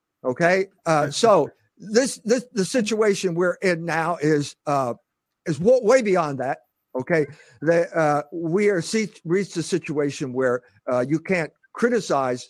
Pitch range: 140-205 Hz